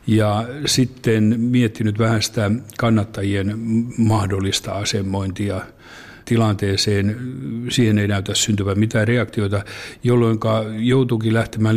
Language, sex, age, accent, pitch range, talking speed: Finnish, male, 60-79, native, 100-120 Hz, 90 wpm